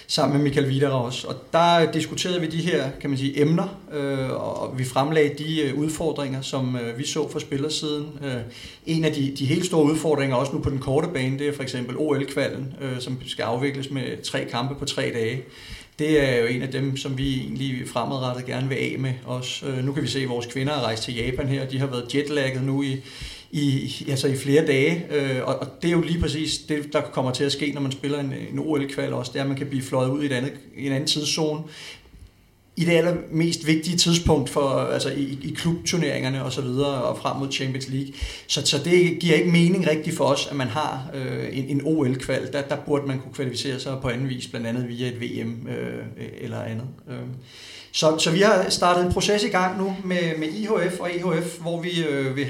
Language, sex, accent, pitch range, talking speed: Danish, male, native, 130-155 Hz, 220 wpm